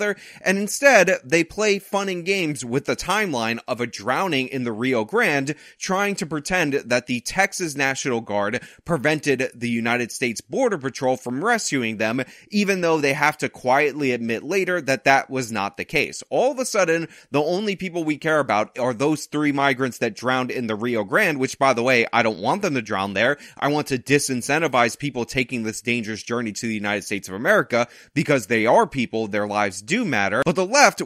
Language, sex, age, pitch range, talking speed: English, male, 20-39, 120-160 Hz, 205 wpm